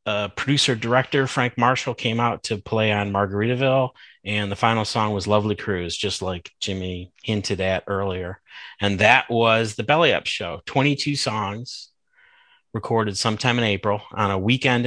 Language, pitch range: English, 100-115 Hz